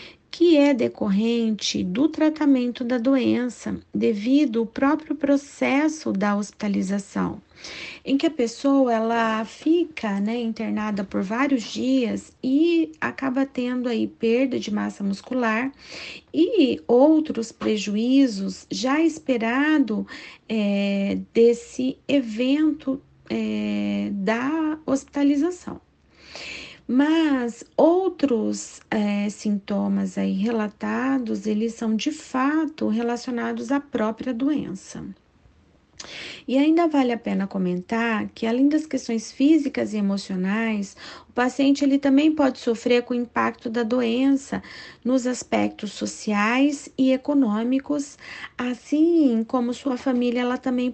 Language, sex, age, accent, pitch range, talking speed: Portuguese, female, 40-59, Brazilian, 220-275 Hz, 105 wpm